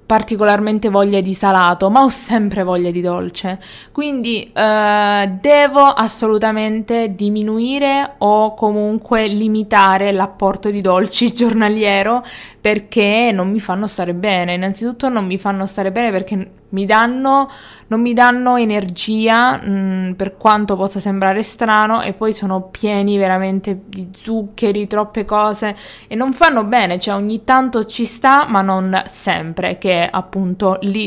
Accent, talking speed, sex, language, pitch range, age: native, 140 wpm, female, Italian, 195-230 Hz, 20-39